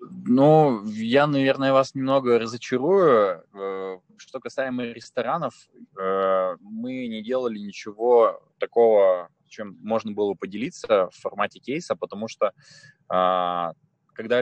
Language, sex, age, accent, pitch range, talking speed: Russian, male, 20-39, native, 90-130 Hz, 100 wpm